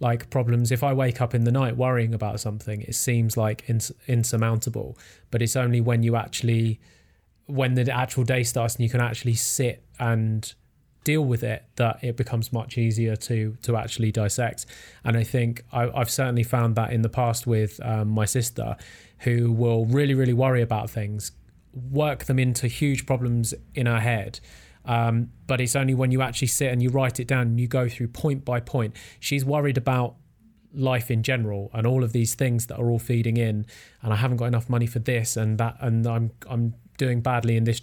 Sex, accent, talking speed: male, British, 205 wpm